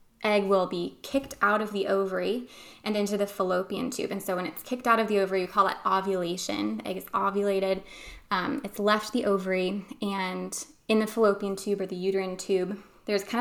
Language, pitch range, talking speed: English, 195-230 Hz, 200 wpm